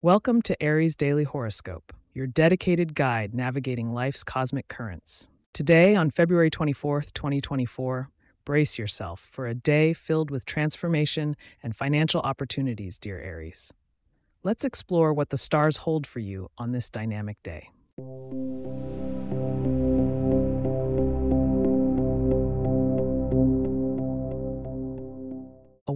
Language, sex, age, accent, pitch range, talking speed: English, female, 30-49, American, 95-155 Hz, 100 wpm